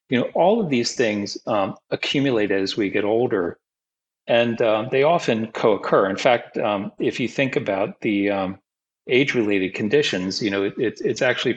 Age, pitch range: 40-59, 100-125 Hz